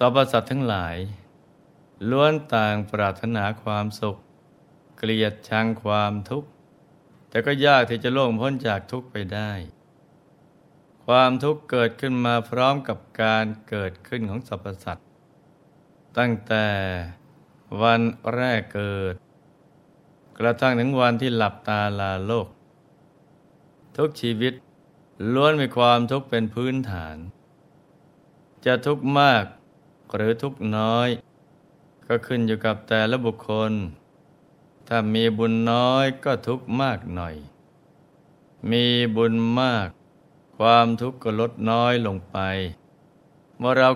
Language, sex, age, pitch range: Thai, male, 20-39, 105-130 Hz